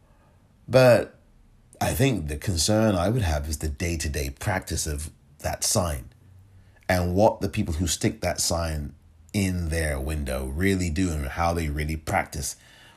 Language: English